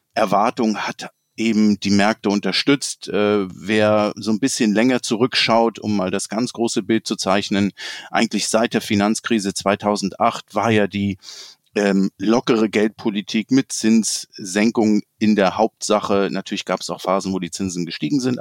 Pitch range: 95-110 Hz